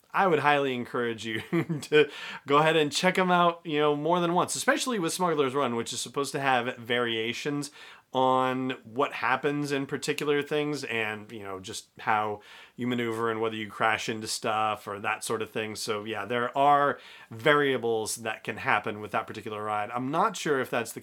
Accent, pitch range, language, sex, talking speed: American, 110-140 Hz, English, male, 195 wpm